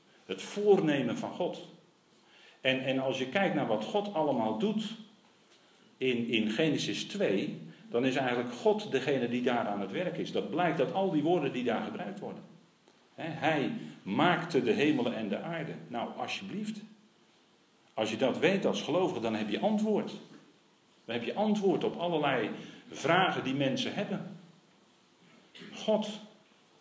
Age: 50-69